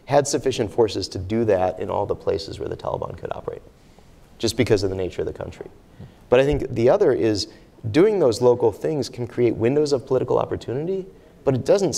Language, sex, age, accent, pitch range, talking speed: English, male, 30-49, American, 95-130 Hz, 210 wpm